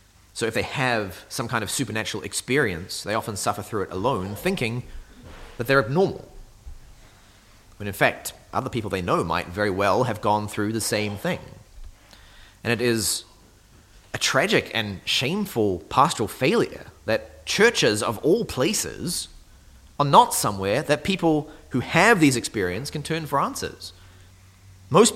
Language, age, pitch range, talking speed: English, 30-49, 95-130 Hz, 150 wpm